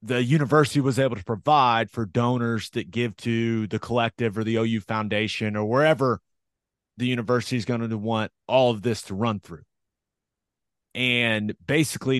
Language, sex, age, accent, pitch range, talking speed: English, male, 30-49, American, 110-135 Hz, 160 wpm